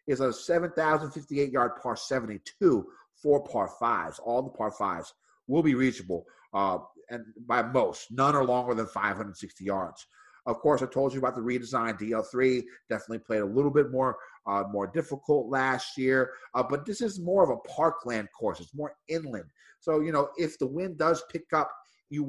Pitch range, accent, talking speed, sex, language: 115-145 Hz, American, 180 wpm, male, English